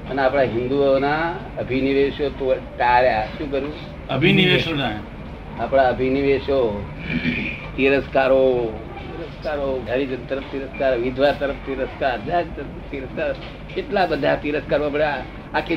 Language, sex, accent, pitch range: Gujarati, male, native, 130-160 Hz